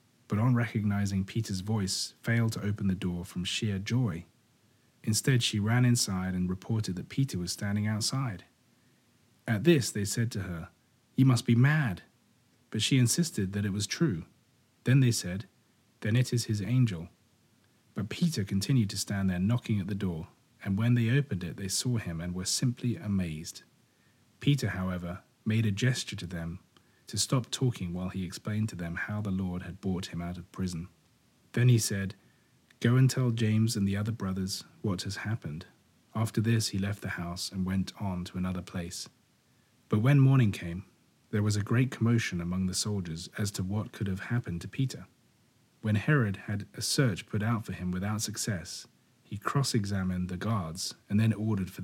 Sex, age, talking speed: male, 30-49, 185 wpm